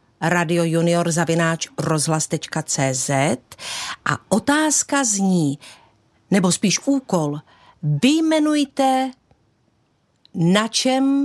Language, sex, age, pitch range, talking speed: Czech, female, 50-69, 170-235 Hz, 70 wpm